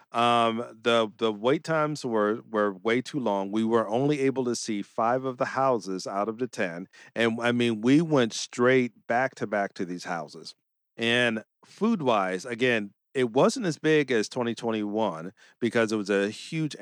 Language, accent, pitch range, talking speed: English, American, 110-140 Hz, 180 wpm